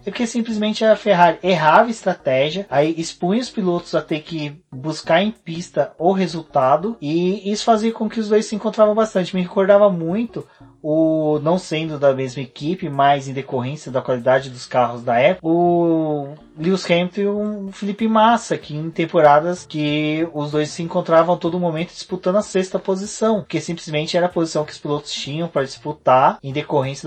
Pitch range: 145-185 Hz